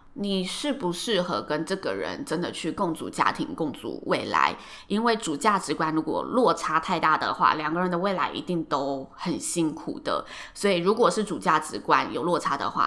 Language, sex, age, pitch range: Chinese, female, 20-39, 160-205 Hz